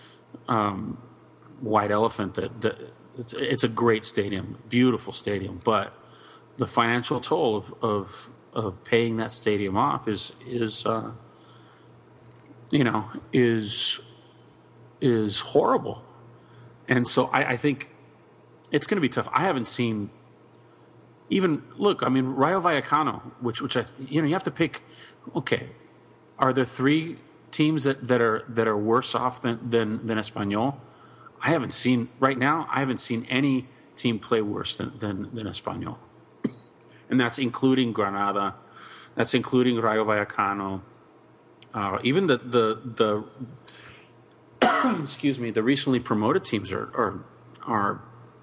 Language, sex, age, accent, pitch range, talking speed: English, male, 40-59, American, 110-130 Hz, 140 wpm